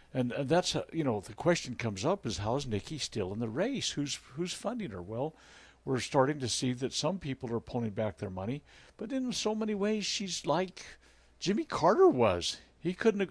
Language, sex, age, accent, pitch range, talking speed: English, male, 60-79, American, 125-180 Hz, 210 wpm